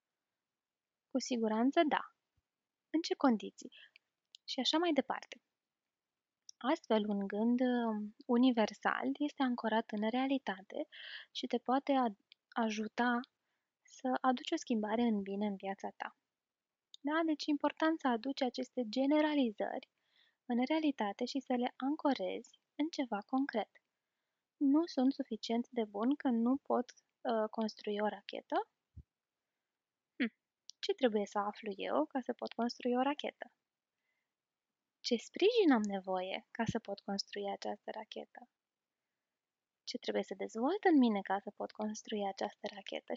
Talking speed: 130 wpm